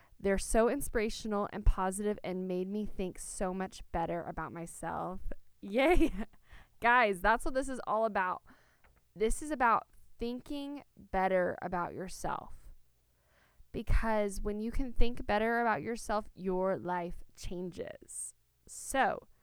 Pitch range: 165-210 Hz